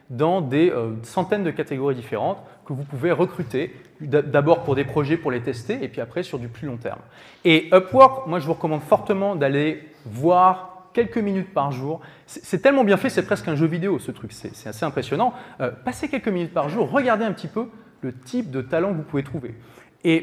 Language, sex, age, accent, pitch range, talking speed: French, male, 30-49, French, 130-175 Hz, 210 wpm